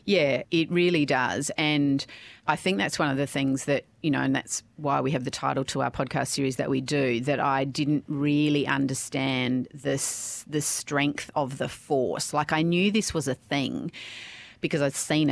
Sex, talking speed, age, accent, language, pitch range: female, 190 wpm, 40-59, Australian, English, 135-155 Hz